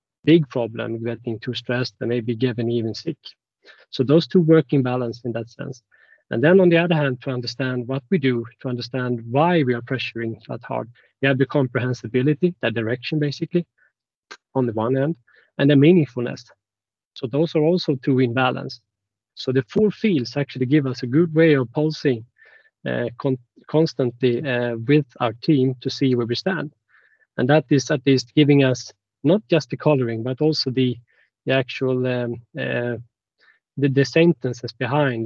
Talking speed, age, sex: 180 wpm, 30-49, male